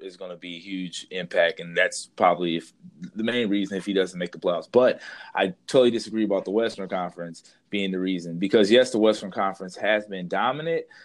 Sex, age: male, 20-39